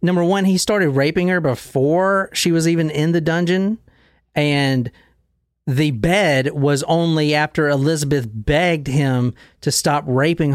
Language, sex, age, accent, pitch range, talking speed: English, male, 40-59, American, 125-165 Hz, 140 wpm